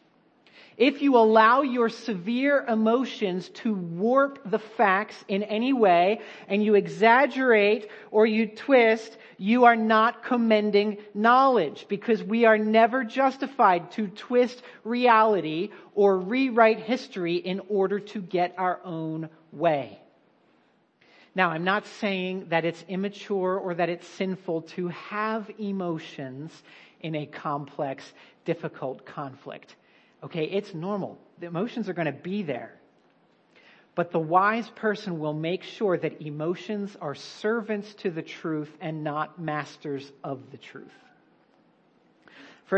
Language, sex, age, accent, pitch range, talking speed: English, male, 40-59, American, 165-220 Hz, 130 wpm